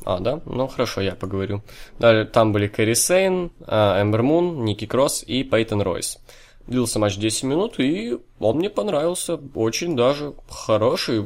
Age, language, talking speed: 20-39, Russian, 145 wpm